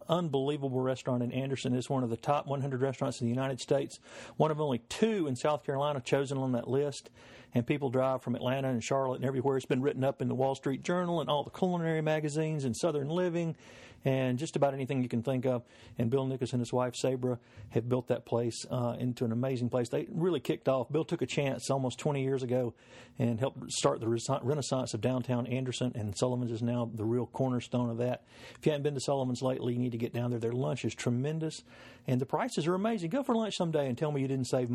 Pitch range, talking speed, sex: 120-145 Hz, 235 wpm, male